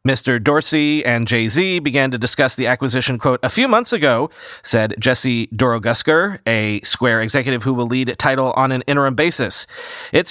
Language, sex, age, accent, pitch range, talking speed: English, male, 40-59, American, 120-185 Hz, 170 wpm